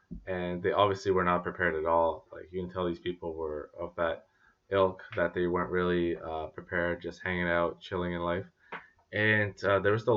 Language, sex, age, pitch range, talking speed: English, male, 20-39, 90-105 Hz, 205 wpm